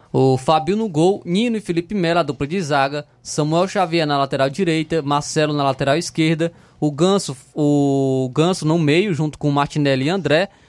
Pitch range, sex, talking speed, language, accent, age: 140-175 Hz, male, 175 wpm, Portuguese, Brazilian, 20-39